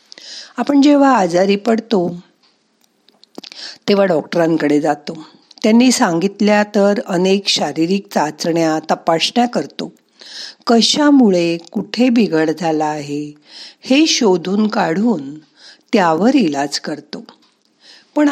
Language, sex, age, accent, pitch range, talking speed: Marathi, female, 50-69, native, 170-235 Hz, 90 wpm